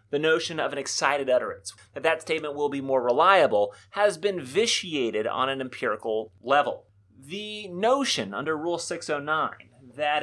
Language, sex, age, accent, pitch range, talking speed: English, male, 30-49, American, 120-195 Hz, 155 wpm